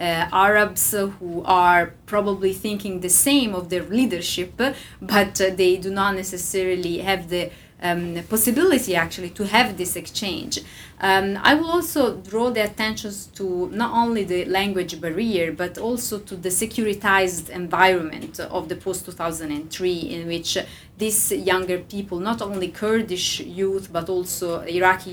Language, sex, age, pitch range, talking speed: English, female, 30-49, 180-215 Hz, 145 wpm